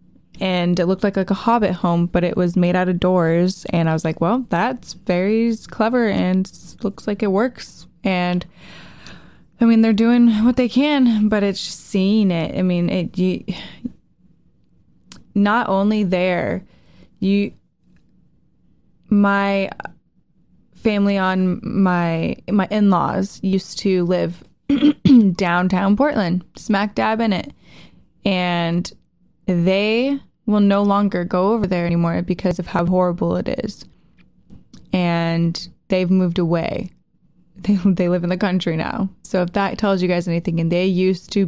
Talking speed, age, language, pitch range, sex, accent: 150 wpm, 20-39, English, 180-205 Hz, female, American